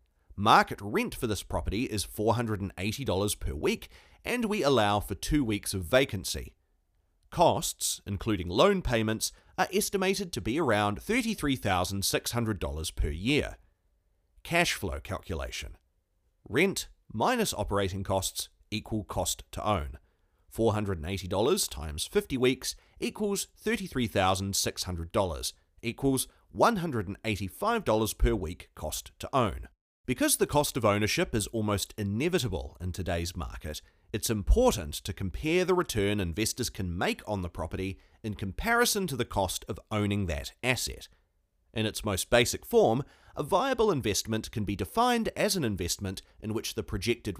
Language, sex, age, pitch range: English, male, 40-59, 90-120 Hz